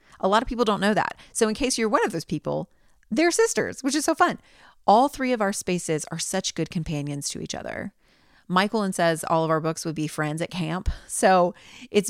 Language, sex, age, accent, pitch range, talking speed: English, female, 30-49, American, 160-210 Hz, 230 wpm